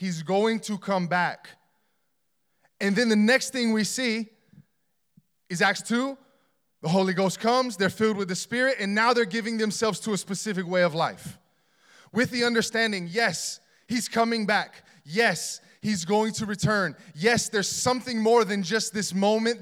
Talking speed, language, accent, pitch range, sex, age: 170 wpm, English, American, 185-225 Hz, male, 20-39